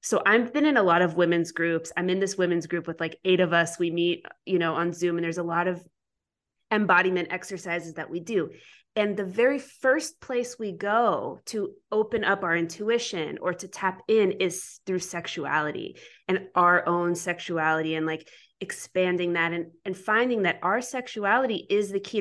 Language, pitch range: English, 175-215 Hz